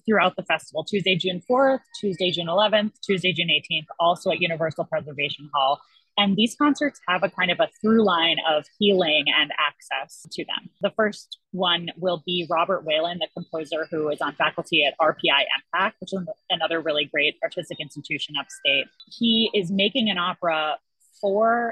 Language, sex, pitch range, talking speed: English, female, 165-205 Hz, 175 wpm